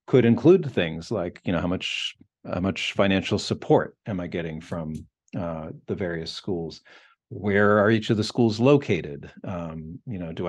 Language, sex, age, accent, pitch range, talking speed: English, male, 40-59, American, 90-115 Hz, 175 wpm